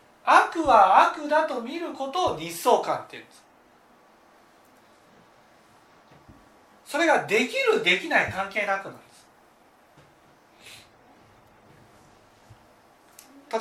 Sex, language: male, Japanese